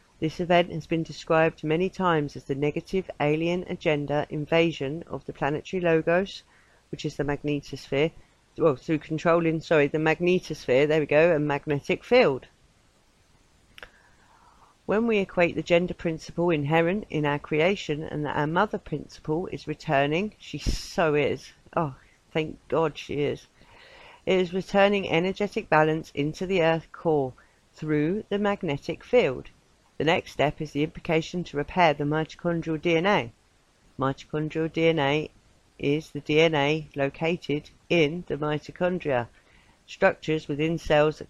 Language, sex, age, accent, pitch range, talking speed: English, female, 50-69, British, 145-170 Hz, 140 wpm